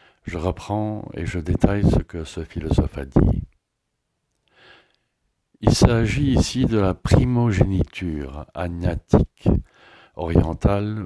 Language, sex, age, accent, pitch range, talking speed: English, male, 60-79, French, 85-105 Hz, 105 wpm